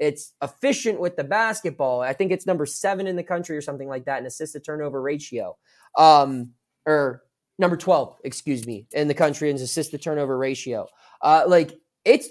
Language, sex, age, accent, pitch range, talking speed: English, male, 20-39, American, 135-185 Hz, 190 wpm